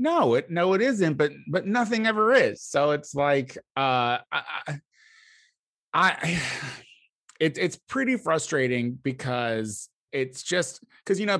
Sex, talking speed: male, 135 wpm